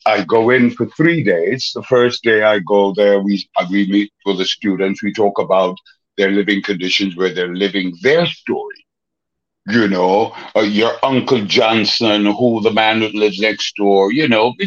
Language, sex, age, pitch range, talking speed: English, male, 60-79, 105-125 Hz, 185 wpm